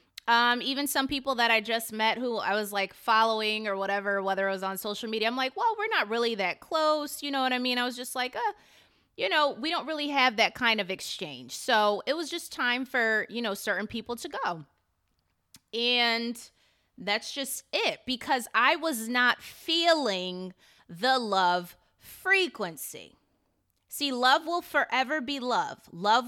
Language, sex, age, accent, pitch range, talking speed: English, female, 20-39, American, 205-275 Hz, 185 wpm